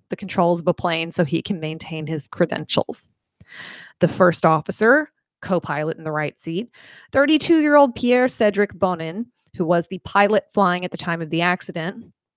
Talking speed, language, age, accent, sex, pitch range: 160 wpm, English, 30-49, American, female, 165-210 Hz